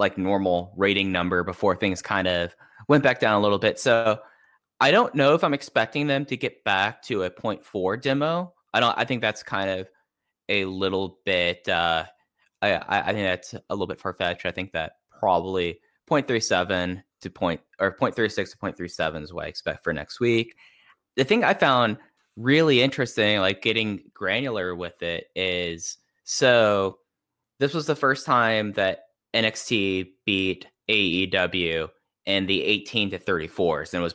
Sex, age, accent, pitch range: male, 10-29, American, 95-115 Hz